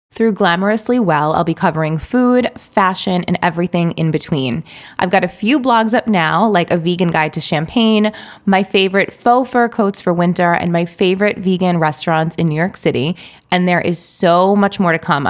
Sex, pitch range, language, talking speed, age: female, 165-200 Hz, English, 190 wpm, 20-39